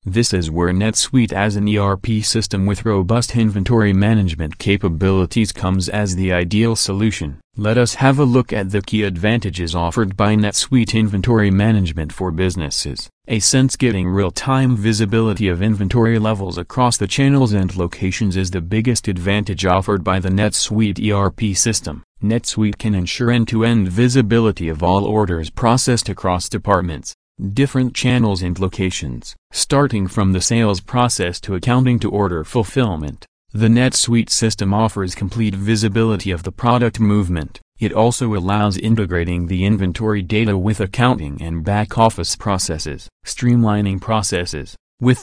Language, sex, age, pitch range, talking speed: English, male, 40-59, 95-115 Hz, 140 wpm